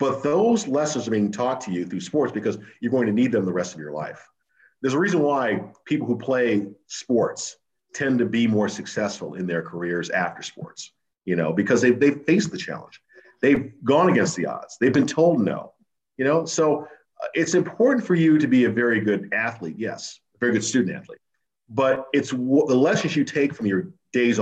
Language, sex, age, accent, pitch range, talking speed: English, male, 50-69, American, 105-145 Hz, 205 wpm